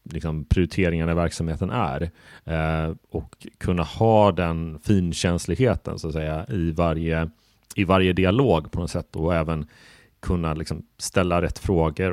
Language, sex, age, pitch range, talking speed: Swedish, male, 30-49, 80-95 Hz, 135 wpm